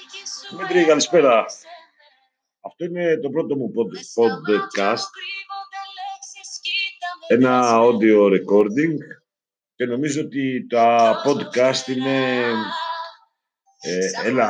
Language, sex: Greek, male